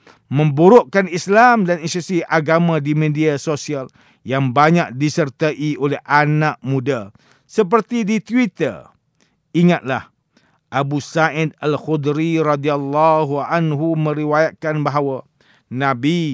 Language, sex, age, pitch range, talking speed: English, male, 50-69, 135-170 Hz, 95 wpm